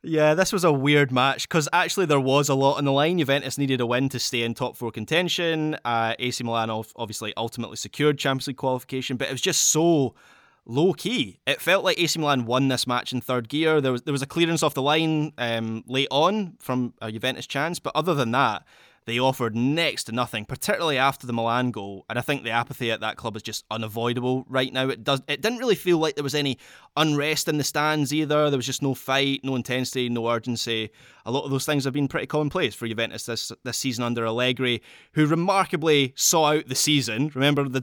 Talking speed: 225 wpm